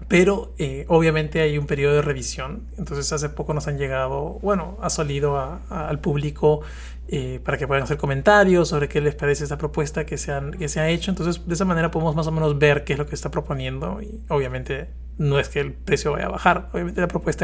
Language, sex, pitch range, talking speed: Spanish, male, 140-165 Hz, 235 wpm